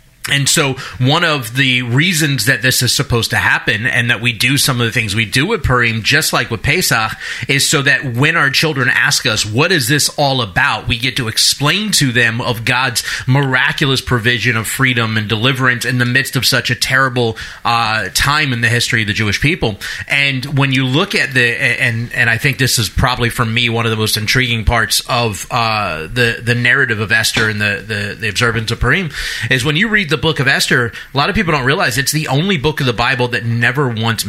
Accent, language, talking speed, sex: American, English, 225 wpm, male